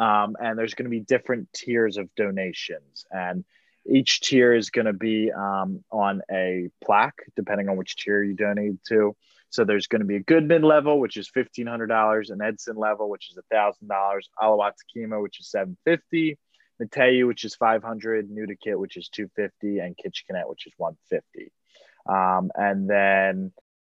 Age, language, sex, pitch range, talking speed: 20-39, English, male, 95-115 Hz, 165 wpm